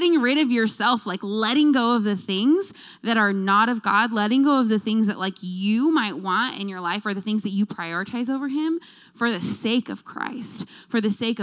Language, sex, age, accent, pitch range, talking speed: English, female, 20-39, American, 185-235 Hz, 230 wpm